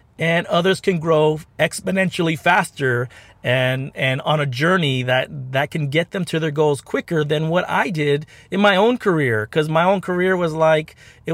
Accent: American